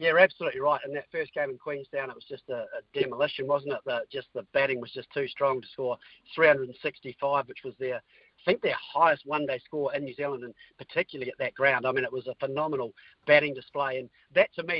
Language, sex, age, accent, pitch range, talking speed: English, male, 50-69, Australian, 135-190 Hz, 225 wpm